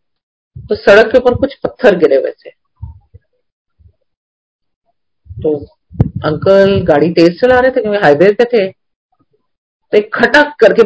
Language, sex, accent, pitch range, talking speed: Hindi, female, native, 155-215 Hz, 115 wpm